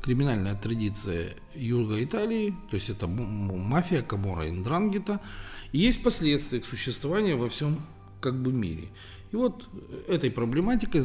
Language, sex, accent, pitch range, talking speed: Russian, male, native, 95-120 Hz, 130 wpm